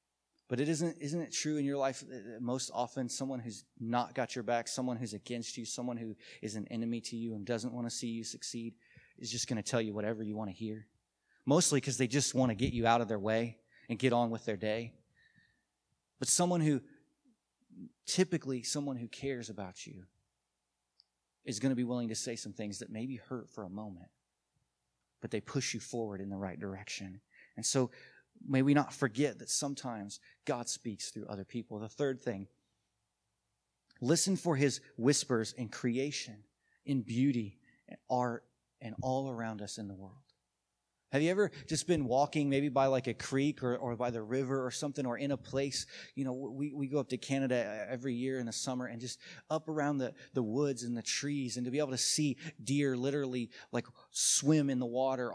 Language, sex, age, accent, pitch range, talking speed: English, male, 30-49, American, 115-145 Hz, 205 wpm